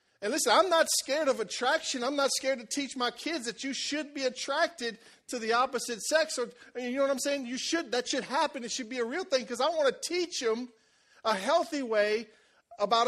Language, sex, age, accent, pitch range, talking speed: English, male, 40-59, American, 175-285 Hz, 230 wpm